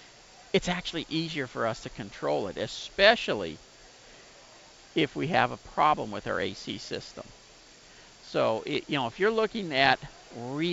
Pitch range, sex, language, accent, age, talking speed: 130-185 Hz, male, English, American, 50-69, 150 wpm